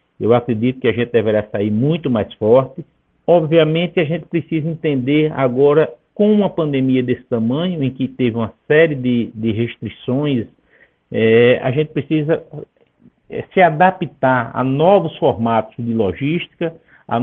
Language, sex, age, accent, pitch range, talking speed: Portuguese, male, 60-79, Brazilian, 115-155 Hz, 140 wpm